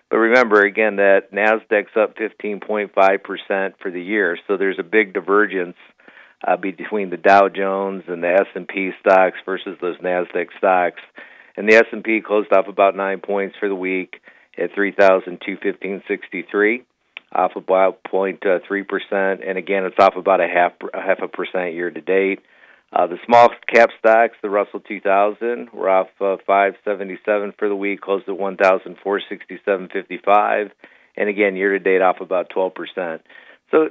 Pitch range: 95-105 Hz